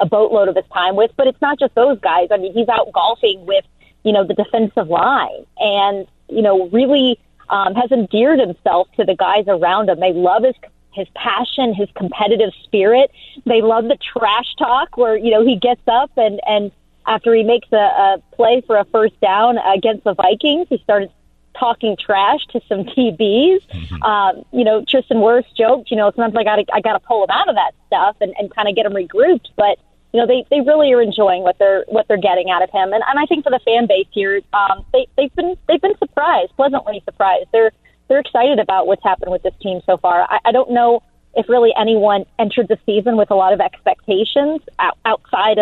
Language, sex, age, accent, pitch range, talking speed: English, female, 40-59, American, 200-245 Hz, 215 wpm